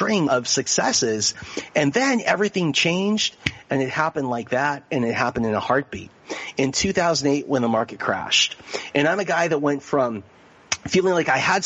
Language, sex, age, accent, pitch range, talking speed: English, male, 30-49, American, 130-175 Hz, 175 wpm